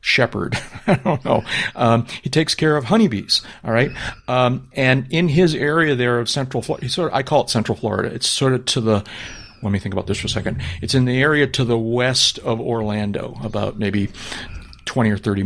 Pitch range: 105-130 Hz